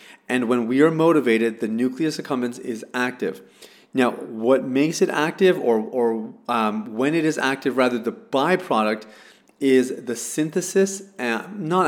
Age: 30-49